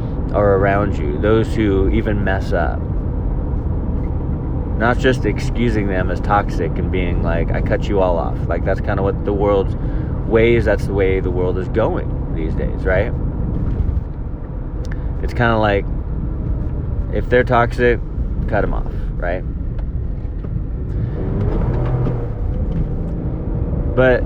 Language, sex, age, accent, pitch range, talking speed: English, male, 30-49, American, 85-115 Hz, 130 wpm